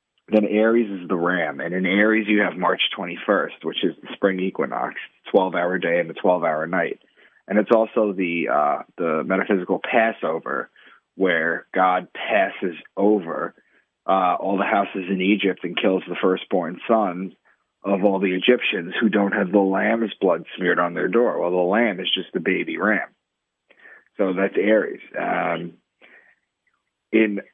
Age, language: 30-49, English